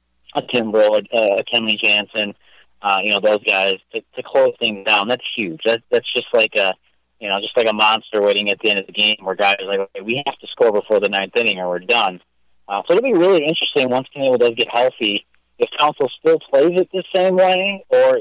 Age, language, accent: 30-49, English, American